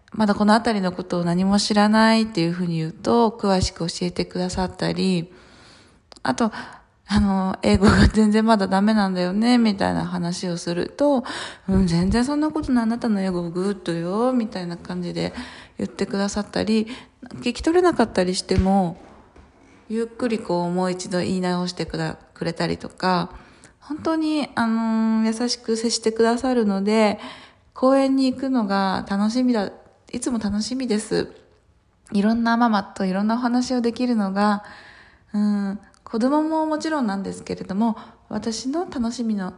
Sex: female